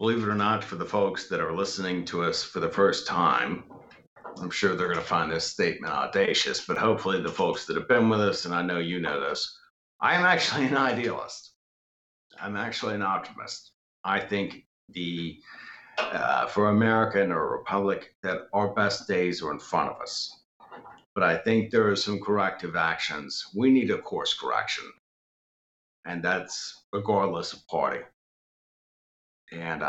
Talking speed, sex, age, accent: 175 wpm, male, 50-69, American